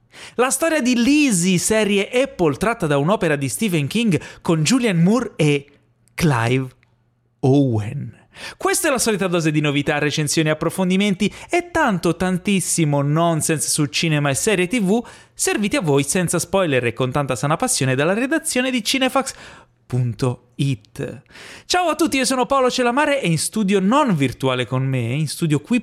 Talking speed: 165 wpm